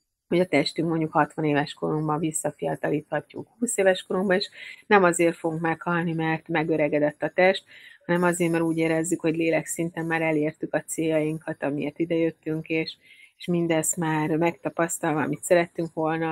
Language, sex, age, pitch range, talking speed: Hungarian, female, 30-49, 155-170 Hz, 155 wpm